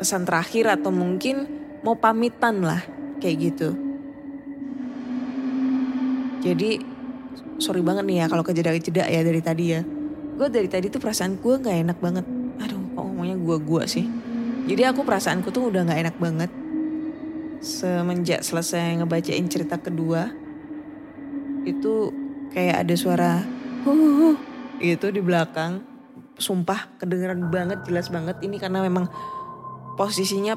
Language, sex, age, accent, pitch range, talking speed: Indonesian, female, 20-39, native, 175-250 Hz, 125 wpm